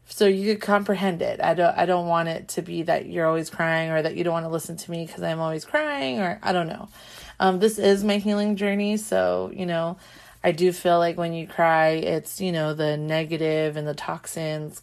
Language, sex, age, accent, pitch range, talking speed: English, female, 30-49, American, 160-200 Hz, 235 wpm